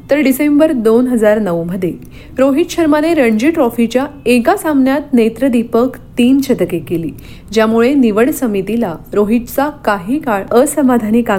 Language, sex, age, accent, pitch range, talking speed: Marathi, female, 30-49, native, 210-280 Hz, 95 wpm